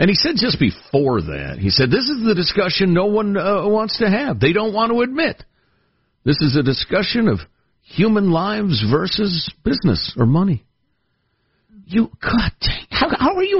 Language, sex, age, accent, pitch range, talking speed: English, male, 50-69, American, 130-210 Hz, 180 wpm